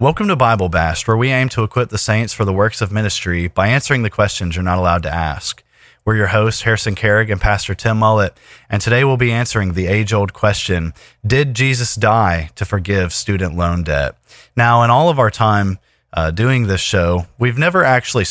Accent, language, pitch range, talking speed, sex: American, English, 95-120 Hz, 210 wpm, male